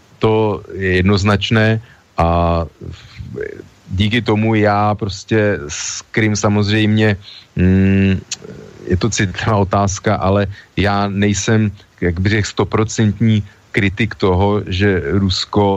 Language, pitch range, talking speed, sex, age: Slovak, 90-105 Hz, 105 wpm, male, 30-49